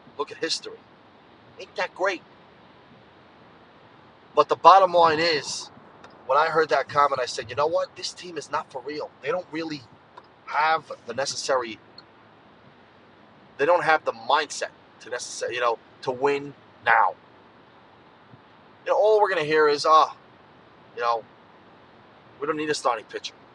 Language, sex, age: English, male, 30-49